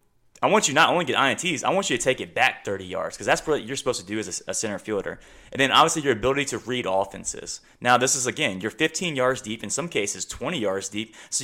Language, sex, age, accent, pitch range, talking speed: English, male, 20-39, American, 105-130 Hz, 260 wpm